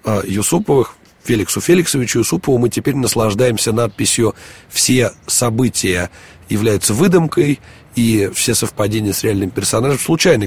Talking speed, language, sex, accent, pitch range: 110 wpm, Russian, male, native, 105-135 Hz